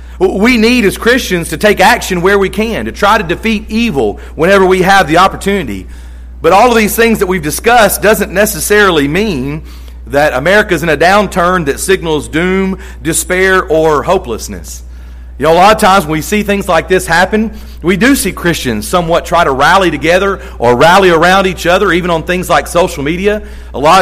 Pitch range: 130-195 Hz